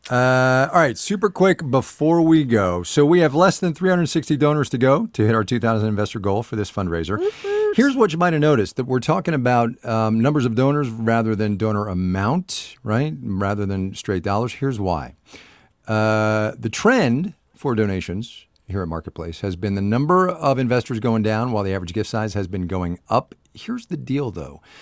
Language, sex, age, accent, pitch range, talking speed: English, male, 50-69, American, 95-130 Hz, 195 wpm